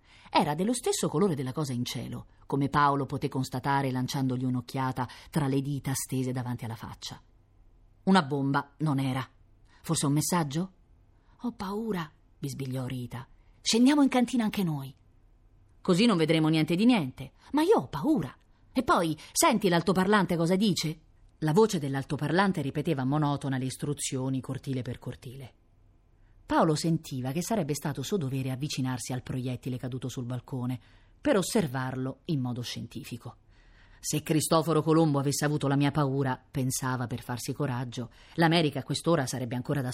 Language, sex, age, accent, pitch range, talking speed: Italian, female, 30-49, native, 125-165 Hz, 150 wpm